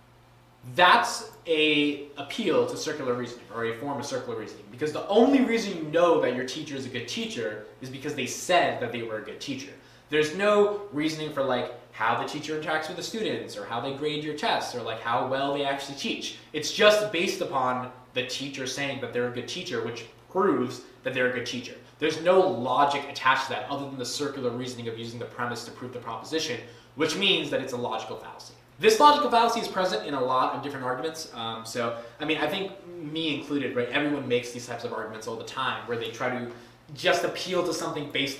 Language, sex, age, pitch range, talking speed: English, male, 20-39, 125-155 Hz, 225 wpm